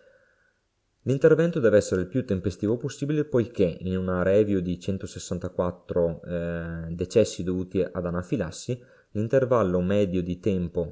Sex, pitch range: male, 90-105 Hz